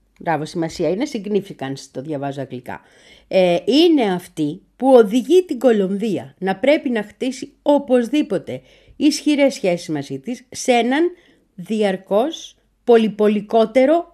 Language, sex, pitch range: Greek, female, 185-295 Hz